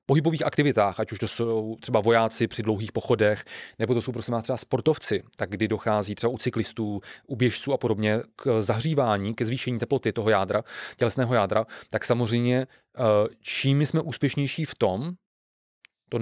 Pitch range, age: 110-130 Hz, 30-49